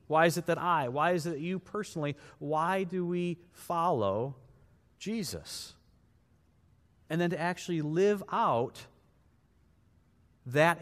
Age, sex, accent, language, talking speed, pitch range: 30-49, male, American, English, 130 wpm, 130-210 Hz